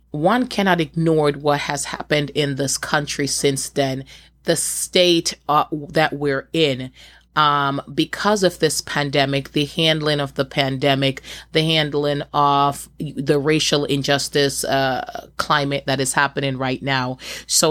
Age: 30-49